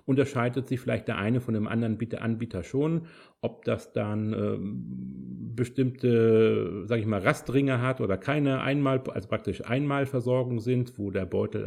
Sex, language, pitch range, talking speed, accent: male, German, 110-140 Hz, 155 wpm, German